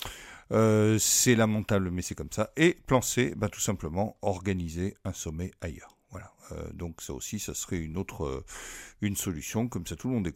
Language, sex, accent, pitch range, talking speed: French, male, French, 90-110 Hz, 195 wpm